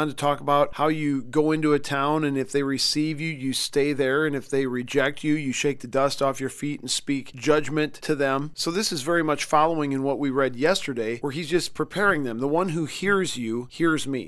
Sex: male